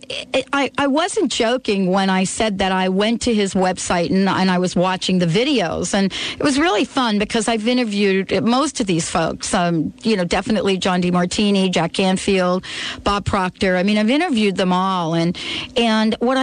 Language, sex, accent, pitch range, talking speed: English, female, American, 190-250 Hz, 185 wpm